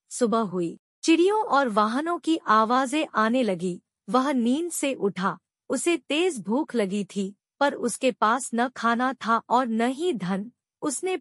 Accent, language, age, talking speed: native, Hindi, 50-69, 155 wpm